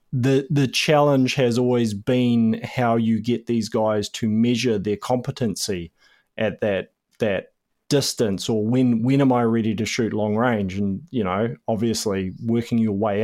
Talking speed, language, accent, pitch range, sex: 165 wpm, English, Australian, 110-130 Hz, male